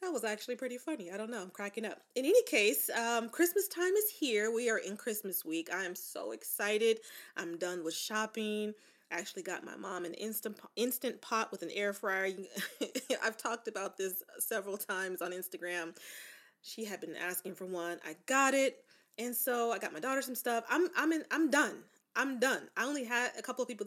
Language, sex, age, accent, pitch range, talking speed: English, female, 20-39, American, 190-245 Hz, 210 wpm